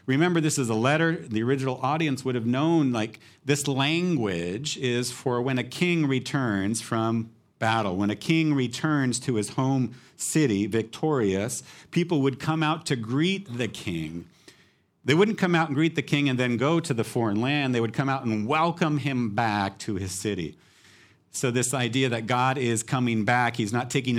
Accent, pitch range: American, 110-150 Hz